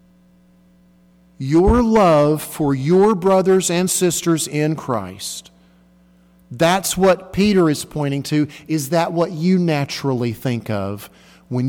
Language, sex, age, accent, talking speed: English, male, 40-59, American, 120 wpm